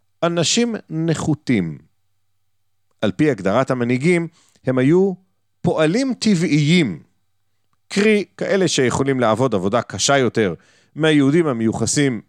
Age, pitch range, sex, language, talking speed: 40-59, 100-155 Hz, male, Hebrew, 95 wpm